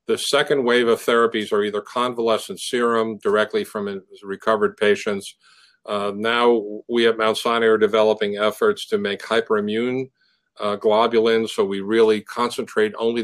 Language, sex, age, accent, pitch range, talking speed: English, male, 50-69, American, 105-130 Hz, 145 wpm